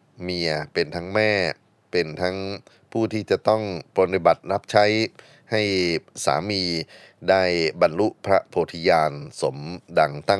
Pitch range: 80-95 Hz